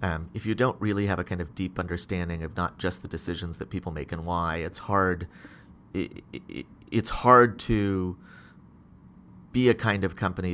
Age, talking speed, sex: 30-49, 190 wpm, male